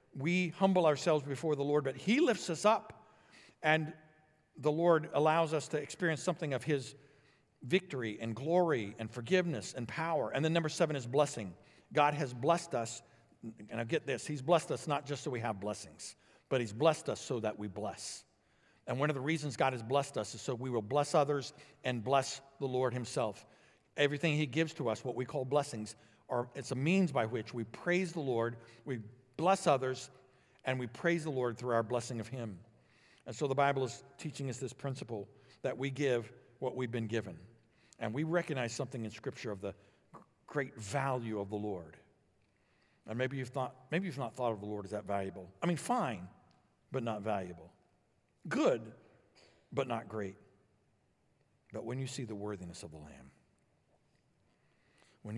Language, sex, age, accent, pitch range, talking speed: English, male, 60-79, American, 110-150 Hz, 190 wpm